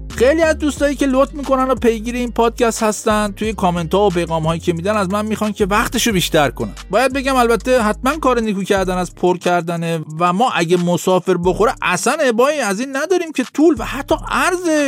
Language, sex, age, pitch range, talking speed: Persian, male, 50-69, 155-235 Hz, 205 wpm